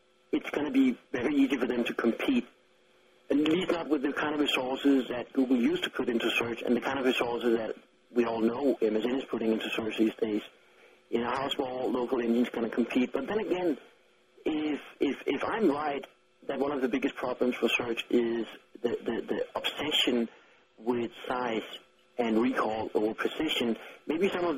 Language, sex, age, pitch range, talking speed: English, male, 50-69, 115-145 Hz, 195 wpm